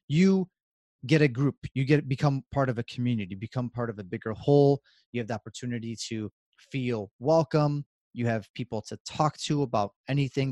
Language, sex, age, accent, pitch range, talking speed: English, male, 30-49, American, 110-140 Hz, 185 wpm